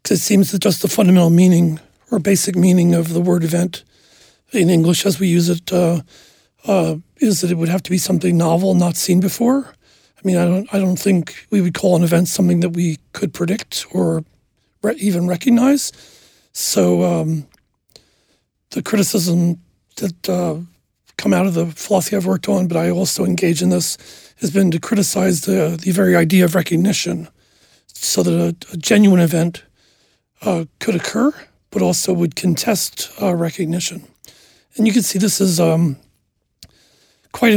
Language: English